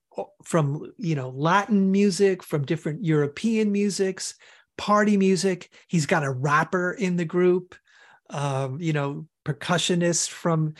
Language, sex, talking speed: English, male, 130 wpm